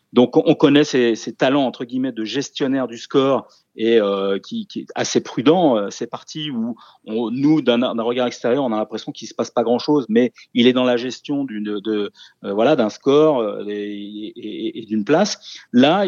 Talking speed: 215 wpm